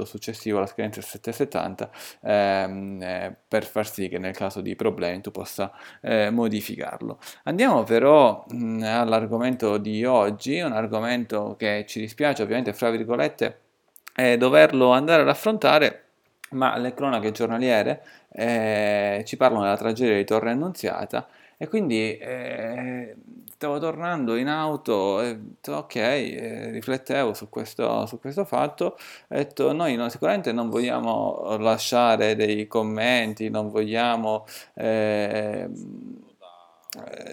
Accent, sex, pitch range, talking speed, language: native, male, 110-130 Hz, 125 wpm, Italian